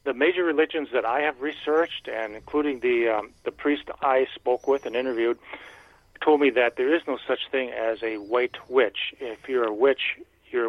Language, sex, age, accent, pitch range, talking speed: English, male, 50-69, American, 125-150 Hz, 195 wpm